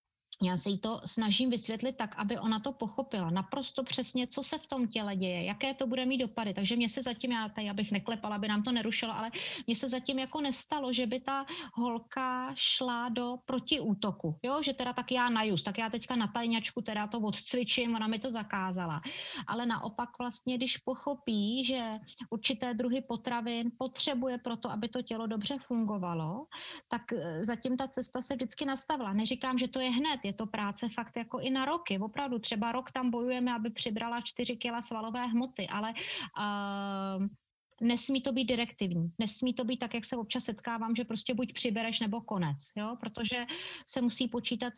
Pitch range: 210-255 Hz